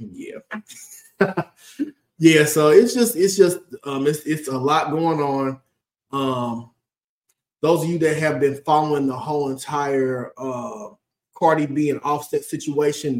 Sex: male